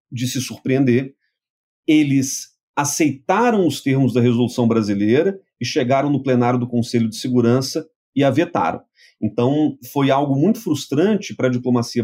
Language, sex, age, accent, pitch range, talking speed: Portuguese, male, 40-59, Brazilian, 120-155 Hz, 145 wpm